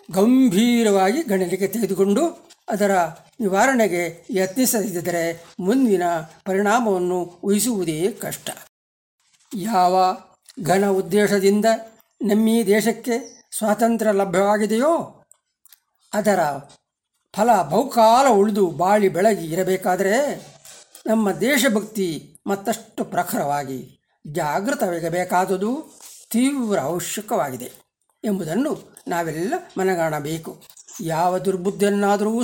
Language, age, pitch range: Kannada, 60-79, 185-230 Hz